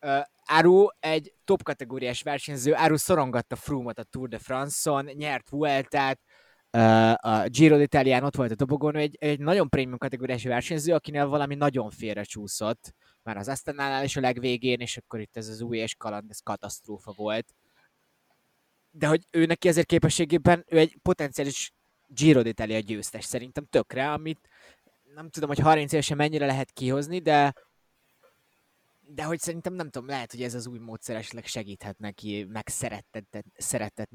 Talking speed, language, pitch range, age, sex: 160 wpm, Hungarian, 110-145 Hz, 20-39, male